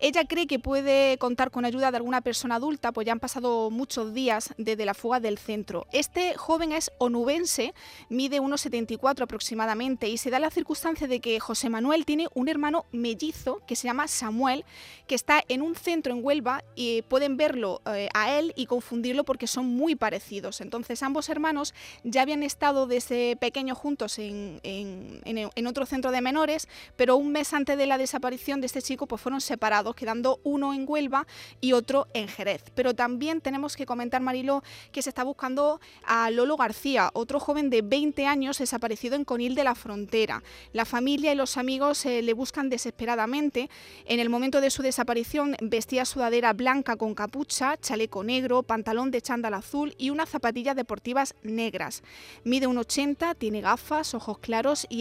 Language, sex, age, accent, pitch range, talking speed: Spanish, female, 20-39, Spanish, 235-285 Hz, 180 wpm